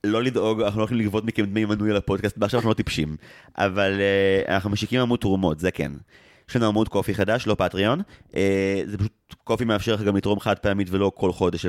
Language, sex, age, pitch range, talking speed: Hebrew, male, 30-49, 95-110 Hz, 215 wpm